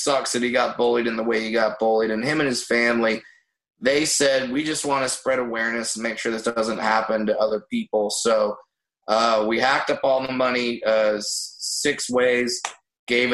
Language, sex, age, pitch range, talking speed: English, male, 20-39, 110-135 Hz, 205 wpm